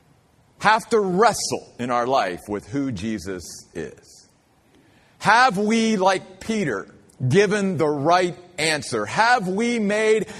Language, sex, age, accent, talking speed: English, male, 40-59, American, 120 wpm